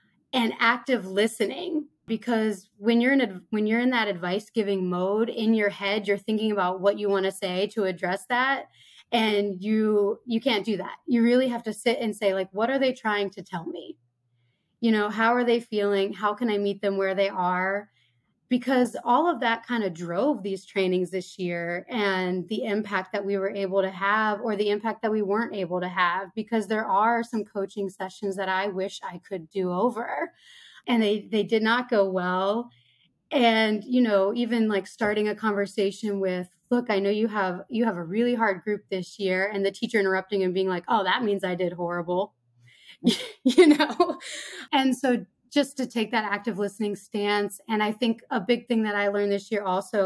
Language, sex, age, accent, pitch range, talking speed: English, female, 20-39, American, 195-240 Hz, 205 wpm